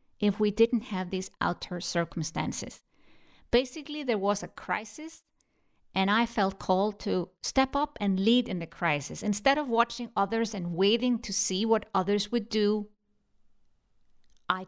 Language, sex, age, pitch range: English, female, 50-69, 190-235 Hz